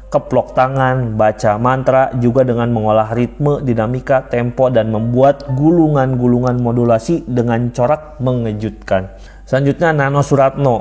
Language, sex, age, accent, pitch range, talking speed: Indonesian, male, 20-39, native, 115-140 Hz, 110 wpm